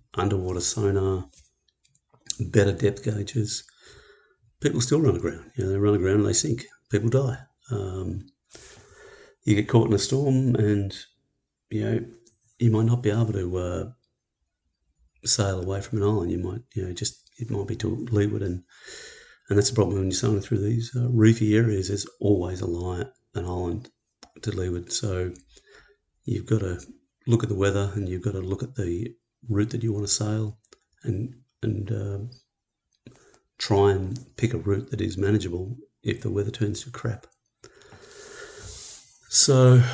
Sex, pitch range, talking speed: male, 100-120 Hz, 165 wpm